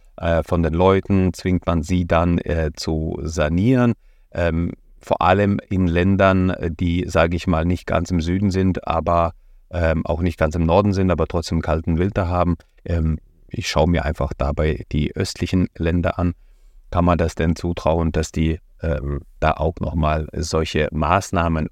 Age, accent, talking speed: 30-49, German, 165 wpm